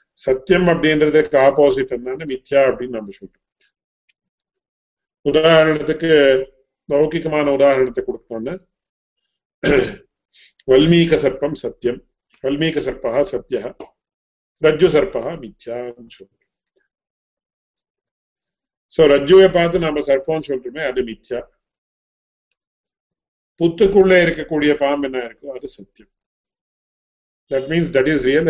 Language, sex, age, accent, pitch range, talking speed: English, male, 50-69, Indian, 135-175 Hz, 105 wpm